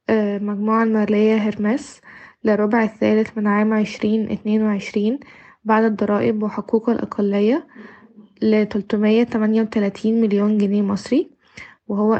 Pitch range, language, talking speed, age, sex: 210-230 Hz, Arabic, 85 wpm, 20-39, female